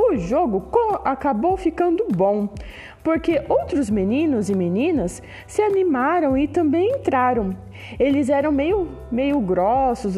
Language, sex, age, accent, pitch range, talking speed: Portuguese, female, 20-39, Brazilian, 195-330 Hz, 120 wpm